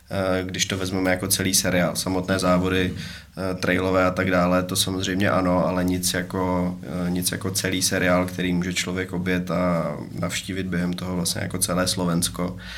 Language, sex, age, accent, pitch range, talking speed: Czech, male, 20-39, native, 90-100 Hz, 160 wpm